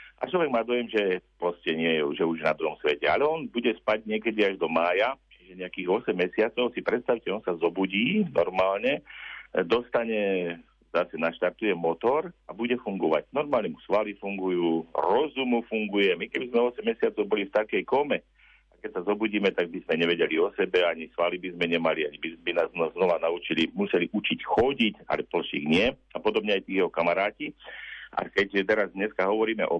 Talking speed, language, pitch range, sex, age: 185 wpm, Slovak, 90-115 Hz, male, 50-69